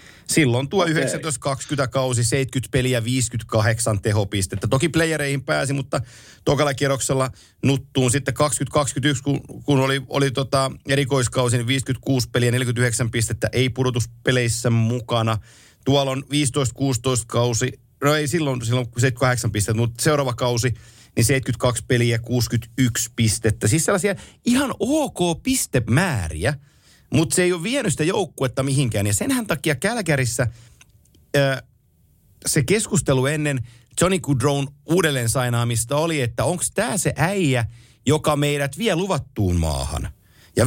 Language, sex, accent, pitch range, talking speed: Finnish, male, native, 120-150 Hz, 120 wpm